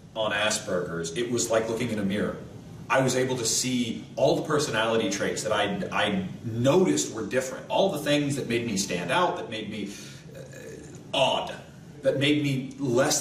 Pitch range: 120-170 Hz